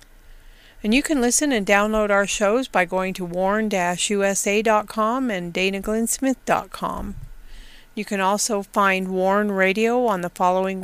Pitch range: 195-235 Hz